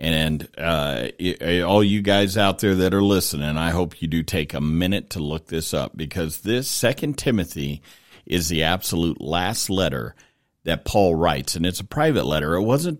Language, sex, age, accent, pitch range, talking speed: English, male, 50-69, American, 80-100 Hz, 185 wpm